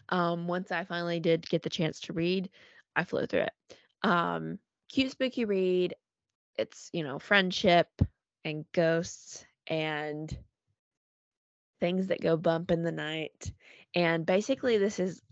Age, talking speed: 20-39, 140 wpm